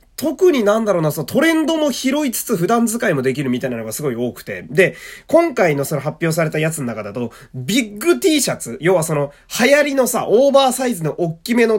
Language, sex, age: Japanese, male, 20-39